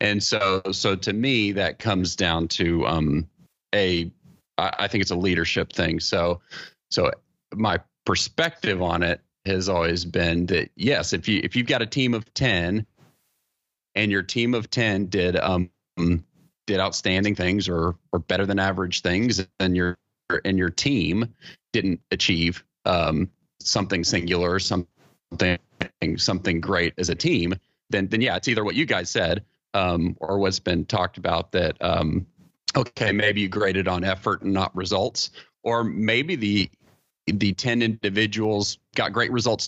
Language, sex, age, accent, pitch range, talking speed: English, male, 30-49, American, 90-105 Hz, 160 wpm